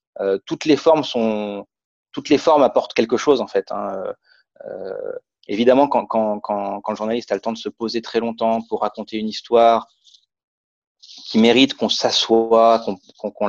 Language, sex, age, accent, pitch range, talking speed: French, male, 30-49, French, 110-140 Hz, 180 wpm